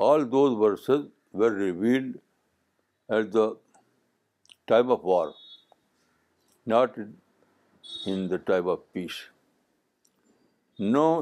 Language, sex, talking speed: Urdu, male, 90 wpm